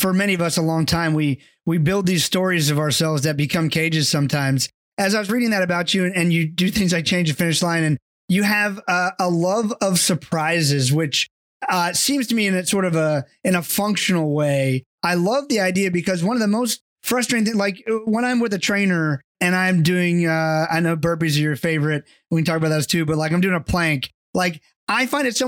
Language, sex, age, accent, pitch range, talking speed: English, male, 20-39, American, 165-210 Hz, 245 wpm